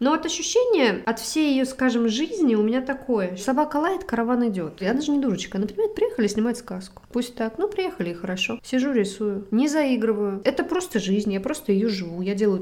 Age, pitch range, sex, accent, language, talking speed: 20-39, 205-265 Hz, female, native, Russian, 195 wpm